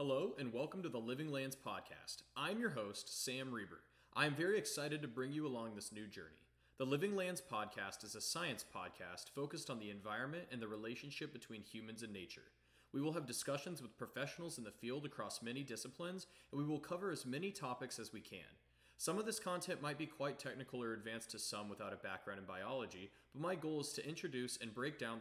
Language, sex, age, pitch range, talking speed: English, male, 30-49, 105-145 Hz, 215 wpm